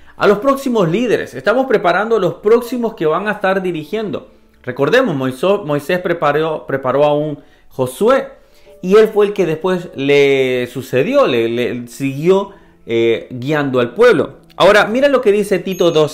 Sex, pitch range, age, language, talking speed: male, 125-185 Hz, 40-59, Spanish, 160 wpm